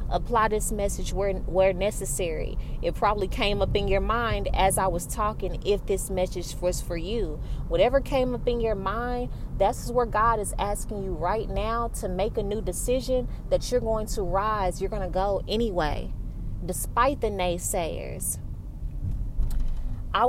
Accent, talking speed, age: American, 165 wpm, 20-39